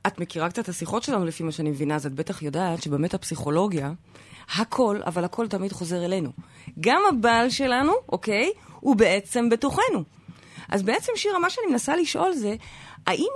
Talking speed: 170 wpm